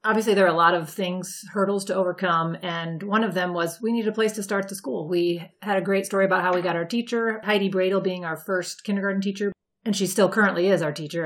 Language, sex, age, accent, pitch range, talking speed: English, female, 30-49, American, 175-210 Hz, 255 wpm